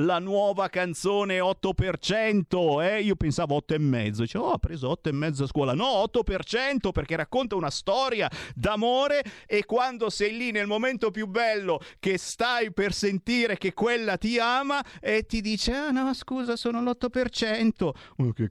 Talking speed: 160 wpm